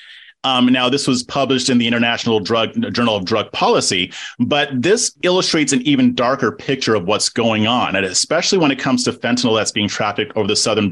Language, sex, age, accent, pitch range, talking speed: English, male, 30-49, American, 110-155 Hz, 205 wpm